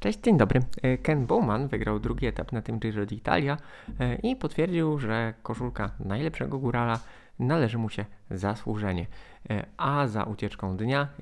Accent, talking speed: native, 140 wpm